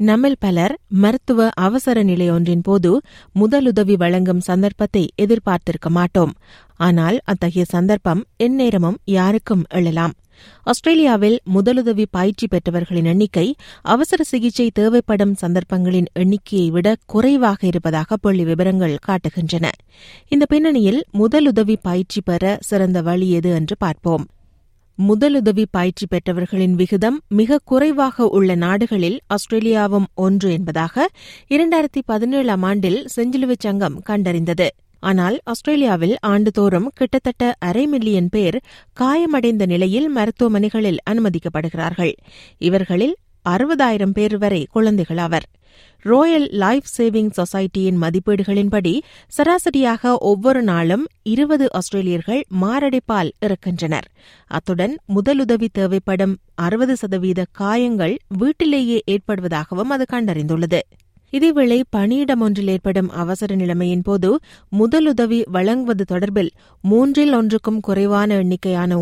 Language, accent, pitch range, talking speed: Tamil, native, 180-235 Hz, 95 wpm